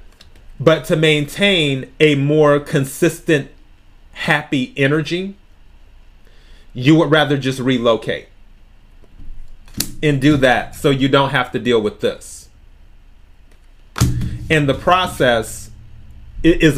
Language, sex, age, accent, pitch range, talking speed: English, male, 30-49, American, 105-160 Hz, 100 wpm